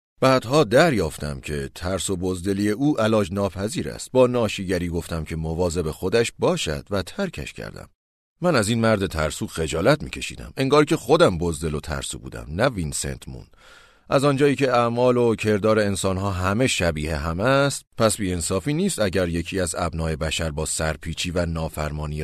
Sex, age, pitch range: male, 30-49, 80-115 Hz